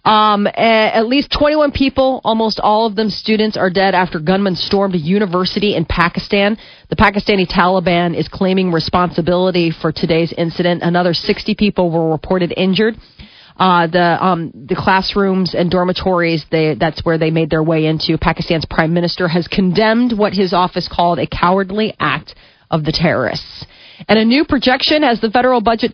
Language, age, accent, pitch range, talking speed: English, 30-49, American, 175-215 Hz, 165 wpm